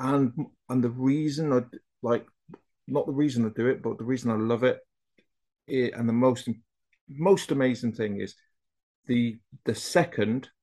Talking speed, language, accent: 165 wpm, English, British